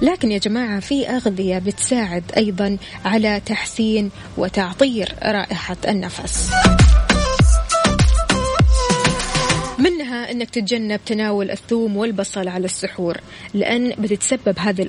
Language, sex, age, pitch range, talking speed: Arabic, female, 20-39, 195-235 Hz, 95 wpm